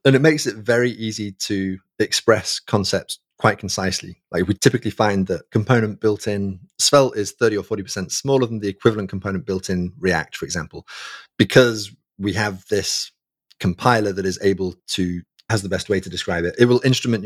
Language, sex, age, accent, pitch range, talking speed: English, male, 30-49, British, 100-125 Hz, 185 wpm